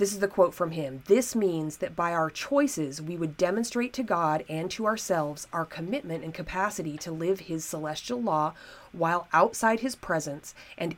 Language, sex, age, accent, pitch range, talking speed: English, female, 30-49, American, 165-225 Hz, 185 wpm